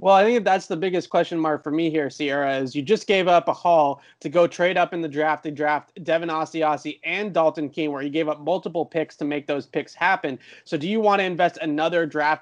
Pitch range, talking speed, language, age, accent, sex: 150-175 Hz, 250 wpm, English, 30-49, American, male